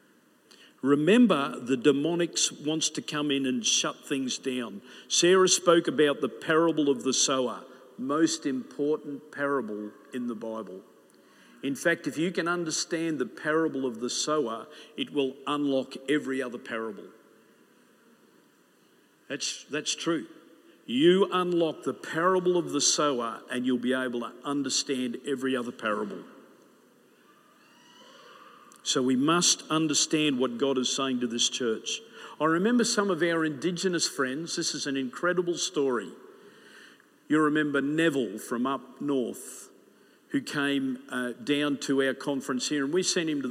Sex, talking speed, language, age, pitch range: male, 140 wpm, English, 50-69, 130-170 Hz